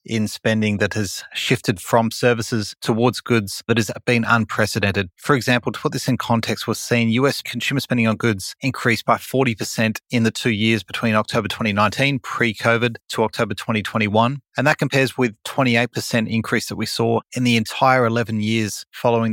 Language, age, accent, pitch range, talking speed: English, 30-49, Australian, 110-120 Hz, 175 wpm